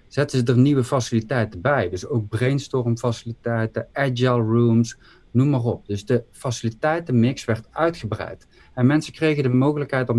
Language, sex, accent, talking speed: Dutch, male, Dutch, 155 wpm